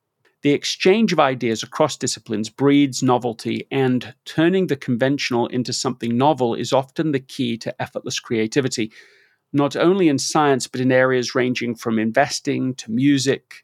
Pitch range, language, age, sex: 125-150 Hz, English, 40-59, male